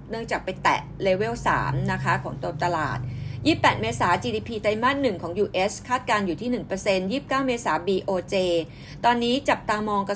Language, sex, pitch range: Thai, female, 190-240 Hz